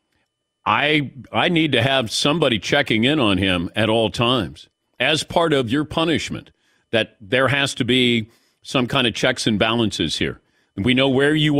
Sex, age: male, 50-69